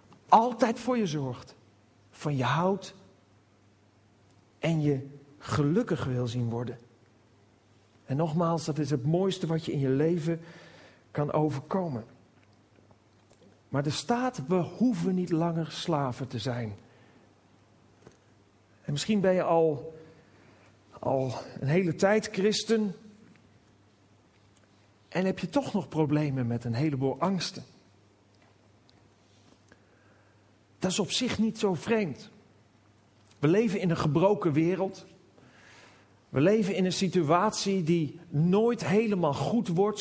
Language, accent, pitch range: Dutch, Dutch, 110-185 Hz